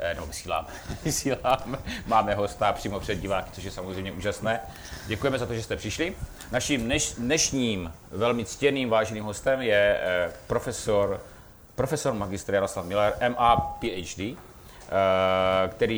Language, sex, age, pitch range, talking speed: Czech, male, 30-49, 90-115 Hz, 115 wpm